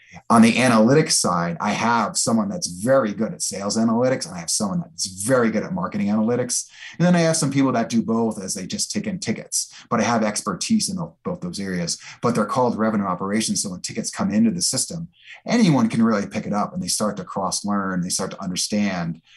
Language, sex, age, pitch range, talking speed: English, male, 30-49, 110-185 Hz, 230 wpm